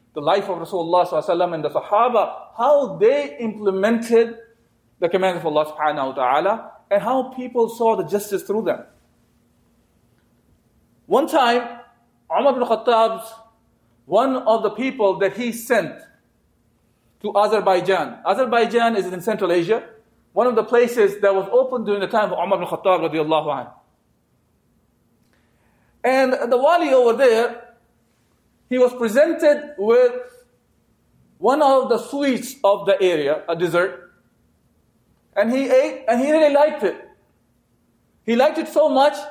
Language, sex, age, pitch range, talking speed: English, male, 40-59, 190-260 Hz, 135 wpm